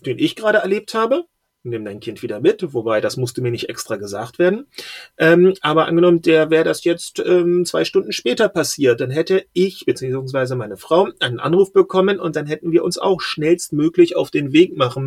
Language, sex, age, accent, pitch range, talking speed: German, male, 40-59, German, 135-195 Hz, 200 wpm